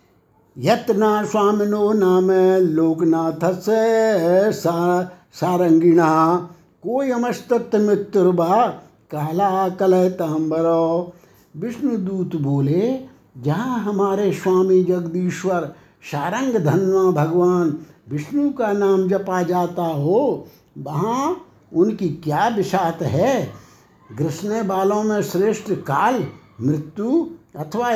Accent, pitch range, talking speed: native, 170-215 Hz, 75 wpm